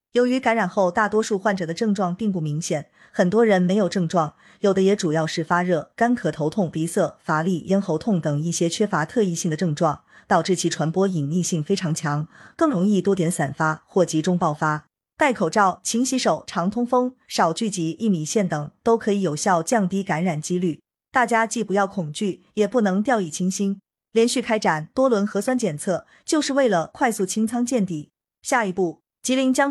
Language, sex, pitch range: Chinese, female, 170-225 Hz